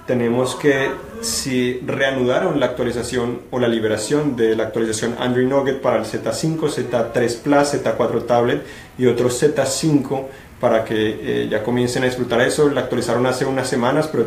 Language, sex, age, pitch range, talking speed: Spanish, male, 30-49, 120-130 Hz, 165 wpm